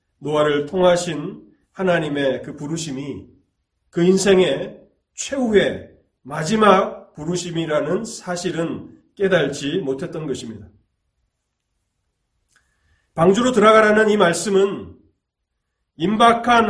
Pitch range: 135-215 Hz